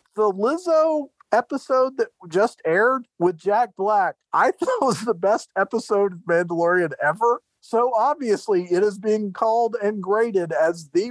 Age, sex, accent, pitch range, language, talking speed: 40-59, male, American, 135-205 Hz, English, 150 wpm